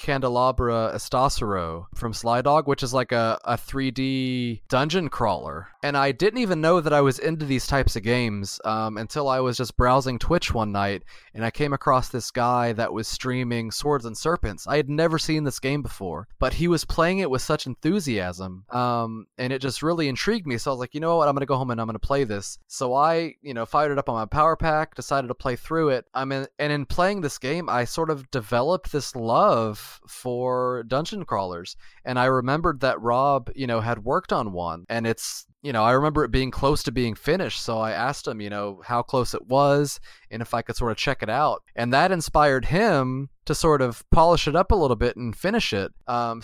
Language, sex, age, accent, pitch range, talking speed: English, male, 20-39, American, 115-145 Hz, 225 wpm